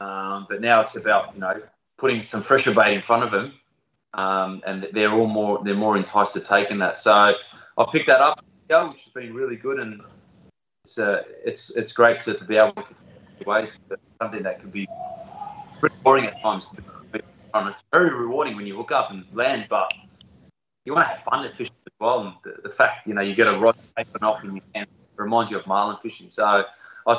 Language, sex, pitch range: English, male, 105-155 Hz